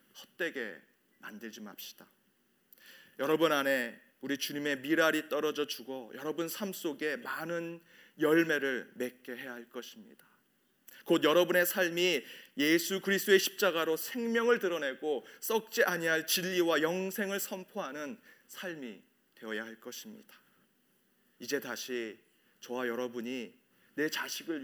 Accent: native